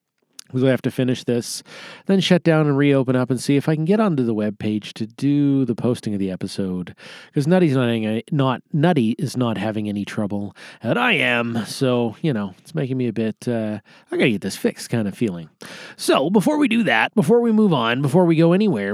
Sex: male